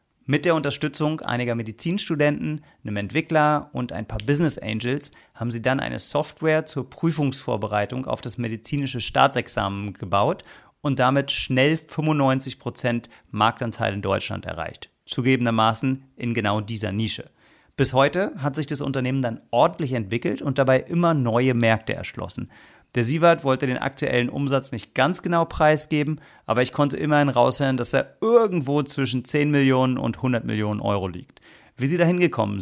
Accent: German